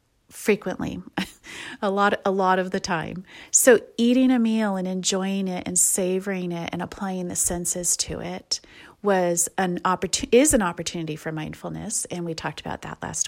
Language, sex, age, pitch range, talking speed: English, female, 30-49, 185-235 Hz, 170 wpm